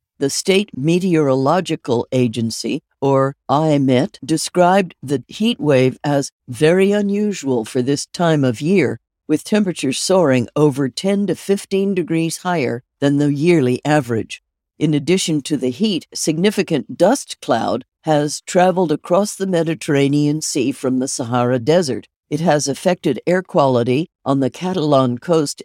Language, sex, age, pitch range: English, female, 60-79, 140-180 Hz